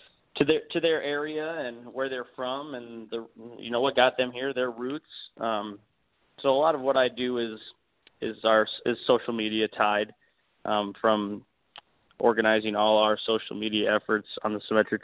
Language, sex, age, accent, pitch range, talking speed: English, male, 20-39, American, 110-130 Hz, 180 wpm